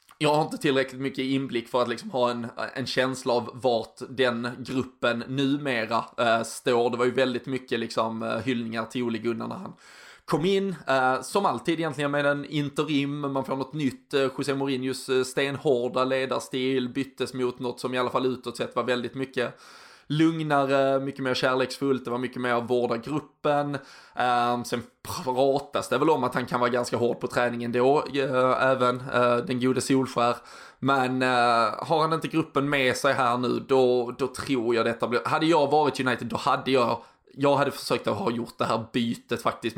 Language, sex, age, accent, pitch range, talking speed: English, male, 20-39, Swedish, 120-135 Hz, 180 wpm